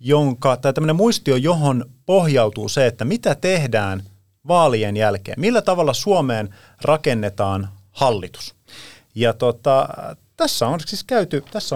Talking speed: 115 wpm